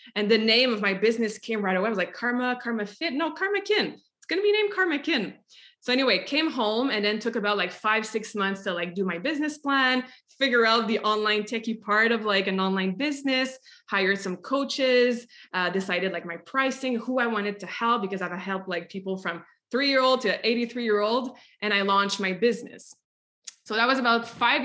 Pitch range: 195-240 Hz